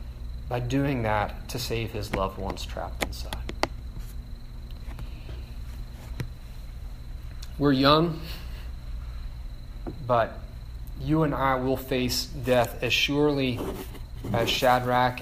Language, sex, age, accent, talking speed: English, male, 30-49, American, 90 wpm